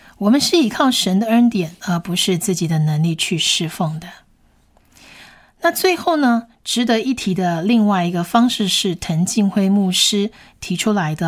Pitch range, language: 175-235 Hz, Chinese